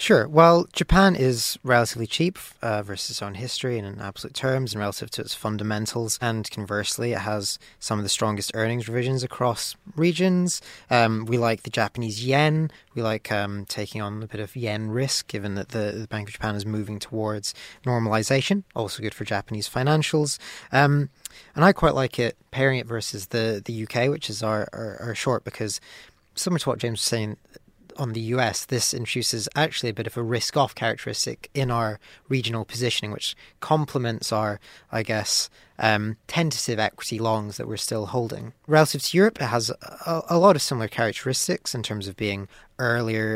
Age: 20-39